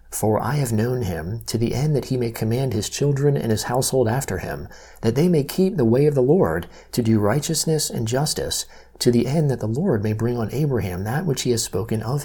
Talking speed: 240 wpm